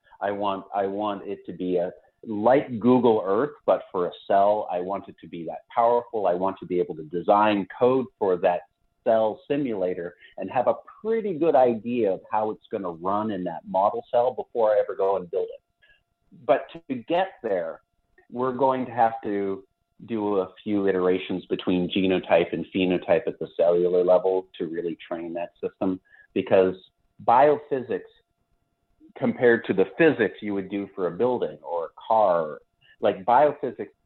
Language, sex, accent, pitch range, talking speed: English, male, American, 95-140 Hz, 175 wpm